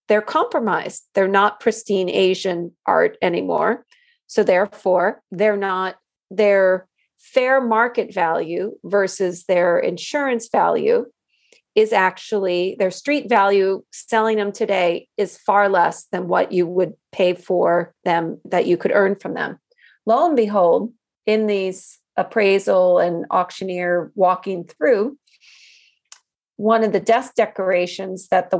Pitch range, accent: 185-230 Hz, American